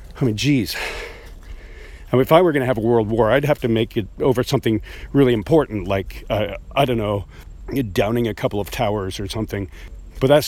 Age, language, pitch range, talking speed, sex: 50-69, English, 105-135 Hz, 210 wpm, male